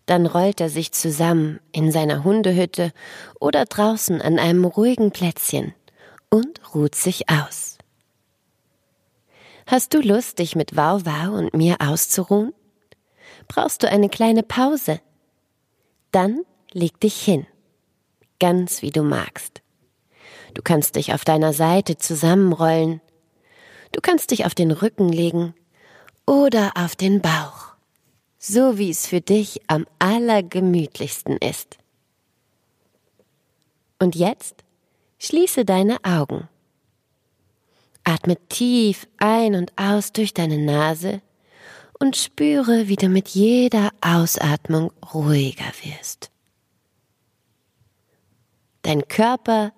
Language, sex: German, female